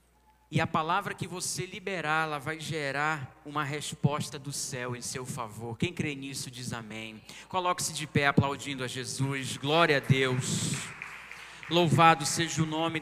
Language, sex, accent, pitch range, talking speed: Portuguese, male, Brazilian, 140-210 Hz, 155 wpm